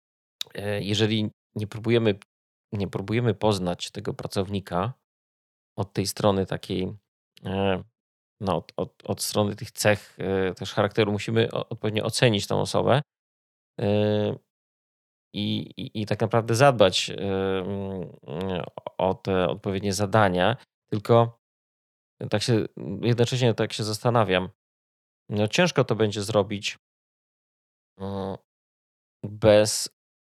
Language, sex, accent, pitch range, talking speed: Polish, male, native, 95-110 Hz, 95 wpm